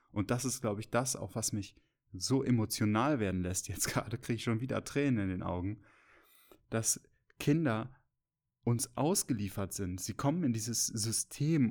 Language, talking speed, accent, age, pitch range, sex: German, 170 wpm, German, 10-29, 105-135 Hz, male